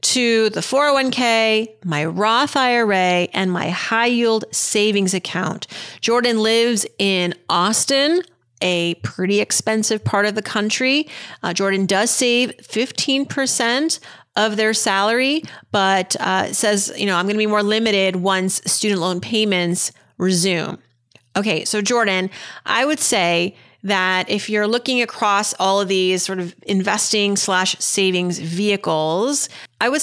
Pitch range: 180-230 Hz